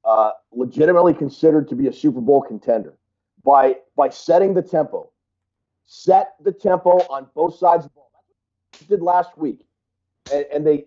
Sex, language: male, English